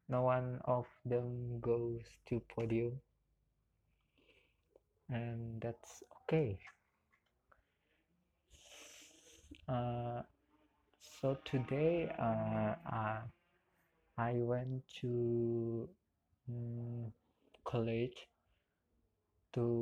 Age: 20-39